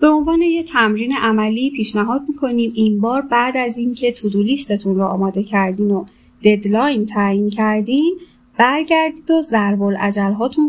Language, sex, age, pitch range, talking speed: Persian, female, 30-49, 200-250 Hz, 135 wpm